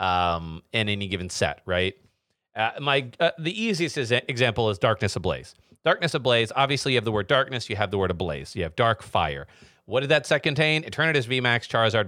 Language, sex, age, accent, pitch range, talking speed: English, male, 40-59, American, 105-140 Hz, 200 wpm